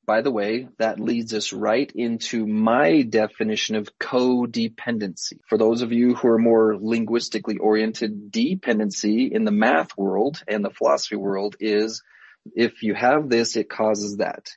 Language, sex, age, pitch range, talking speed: English, male, 30-49, 110-120 Hz, 155 wpm